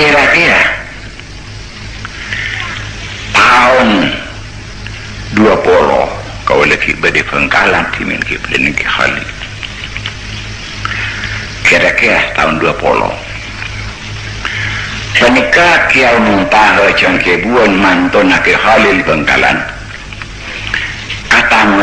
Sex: male